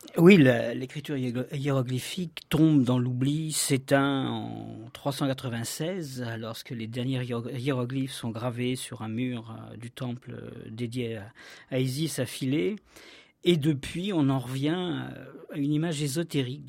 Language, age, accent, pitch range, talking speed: French, 50-69, French, 125-155 Hz, 145 wpm